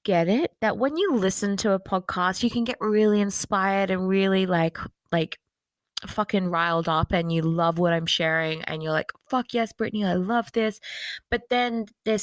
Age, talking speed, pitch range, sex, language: 20-39, 190 wpm, 165-205 Hz, female, English